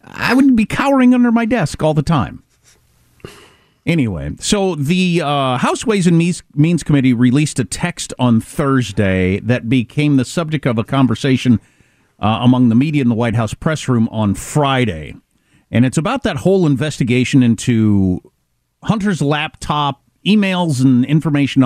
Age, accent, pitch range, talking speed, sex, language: 50-69, American, 110-150 Hz, 150 wpm, male, English